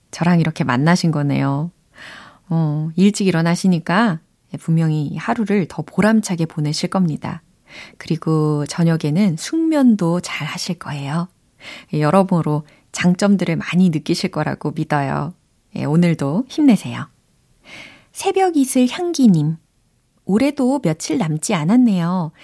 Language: Korean